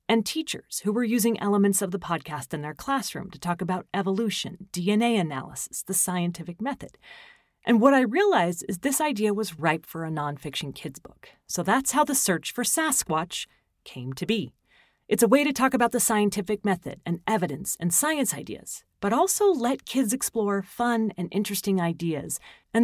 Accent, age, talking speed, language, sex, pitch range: American, 30-49, 180 wpm, English, female, 170-220 Hz